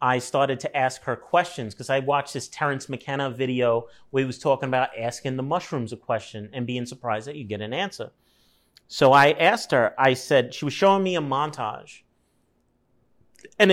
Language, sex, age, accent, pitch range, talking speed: English, male, 30-49, American, 120-150 Hz, 190 wpm